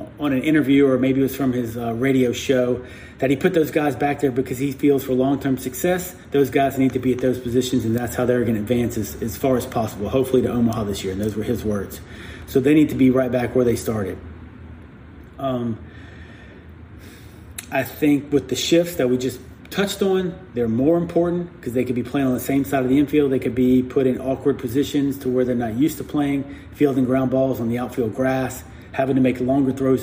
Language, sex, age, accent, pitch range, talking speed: English, male, 30-49, American, 115-140 Hz, 235 wpm